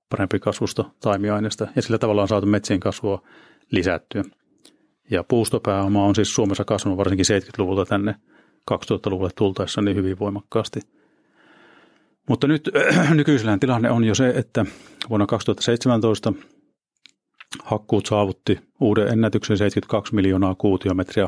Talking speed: 120 wpm